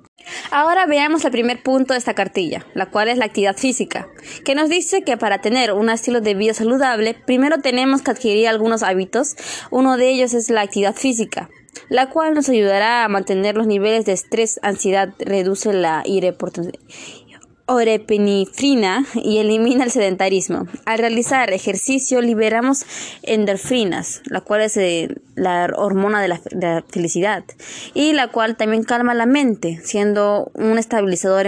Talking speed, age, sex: 155 wpm, 20-39, female